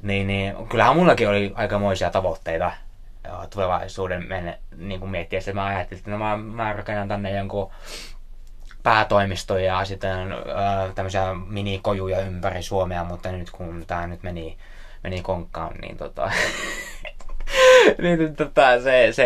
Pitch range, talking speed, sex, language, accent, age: 95-120 Hz, 120 wpm, male, Finnish, native, 20-39